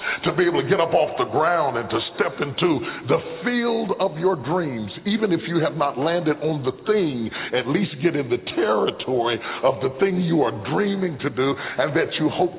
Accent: American